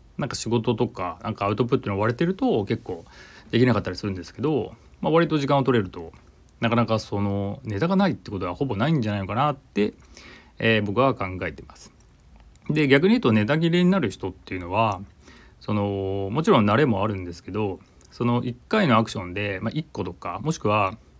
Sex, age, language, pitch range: male, 30-49, Japanese, 95-125 Hz